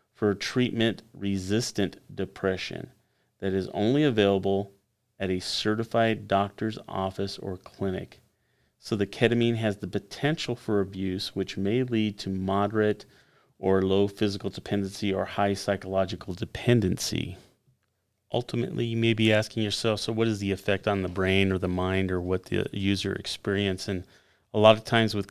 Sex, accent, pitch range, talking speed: male, American, 95-105 Hz, 150 wpm